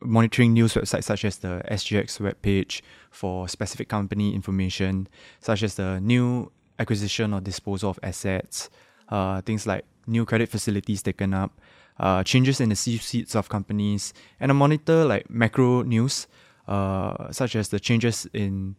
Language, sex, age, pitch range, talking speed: English, male, 20-39, 100-115 Hz, 155 wpm